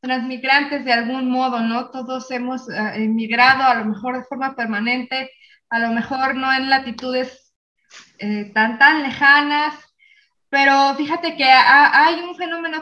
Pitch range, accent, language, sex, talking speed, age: 230-275 Hz, Mexican, Spanish, female, 145 wpm, 20-39